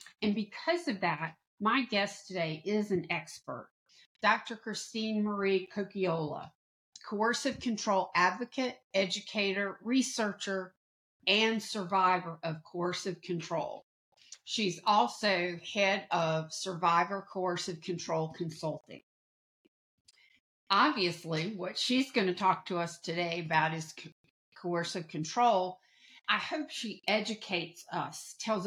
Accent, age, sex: American, 50-69, female